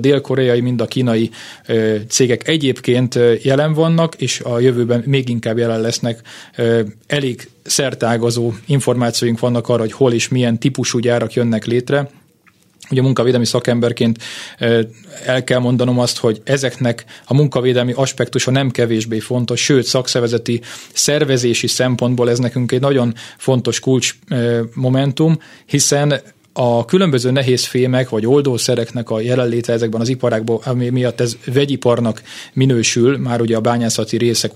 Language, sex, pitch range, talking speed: Hungarian, male, 115-130 Hz, 135 wpm